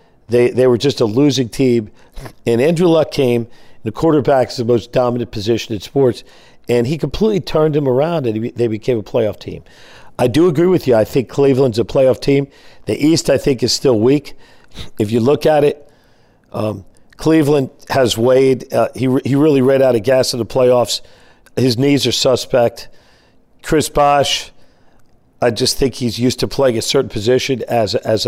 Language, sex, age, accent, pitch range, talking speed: English, male, 50-69, American, 120-140 Hz, 190 wpm